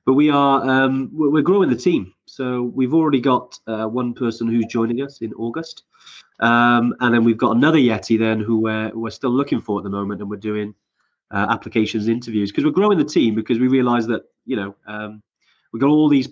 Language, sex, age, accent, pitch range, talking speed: English, male, 30-49, British, 105-125 Hz, 220 wpm